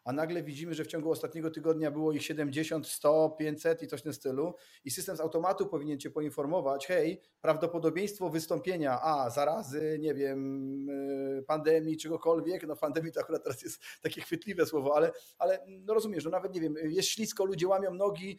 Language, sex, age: Polish, male, 40-59